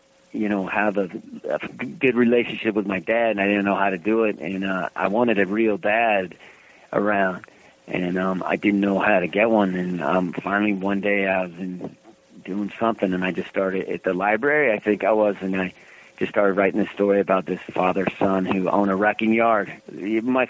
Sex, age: male, 40-59